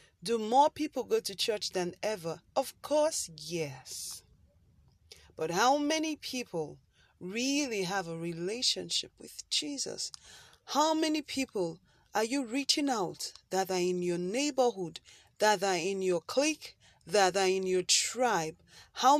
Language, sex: English, female